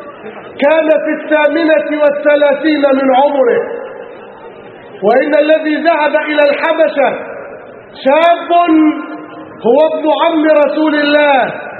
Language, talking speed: Arabic, 85 wpm